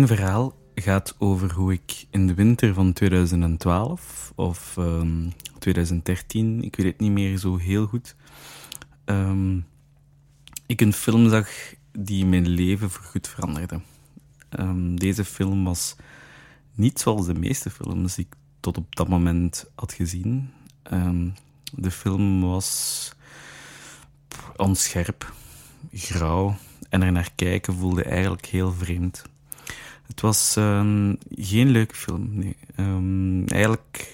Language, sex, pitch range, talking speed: Dutch, male, 90-115 Hz, 120 wpm